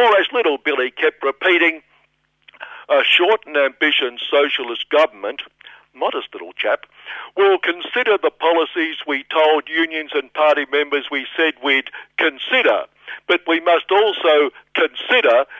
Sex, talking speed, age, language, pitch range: male, 125 wpm, 60-79, English, 145-225 Hz